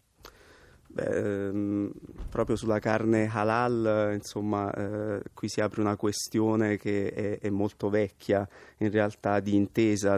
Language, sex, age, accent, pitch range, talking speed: Italian, male, 30-49, native, 100-105 Hz, 125 wpm